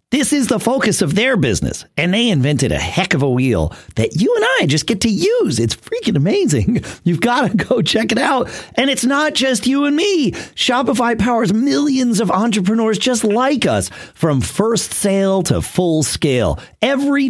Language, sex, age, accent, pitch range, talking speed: English, male, 40-59, American, 140-220 Hz, 190 wpm